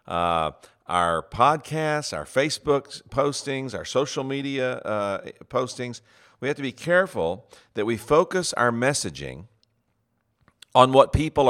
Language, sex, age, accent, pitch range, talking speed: English, male, 50-69, American, 105-140 Hz, 125 wpm